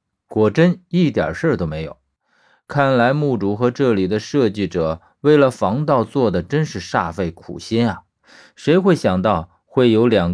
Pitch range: 95-135 Hz